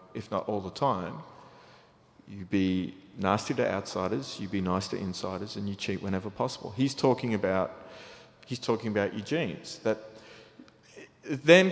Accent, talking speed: Australian, 155 wpm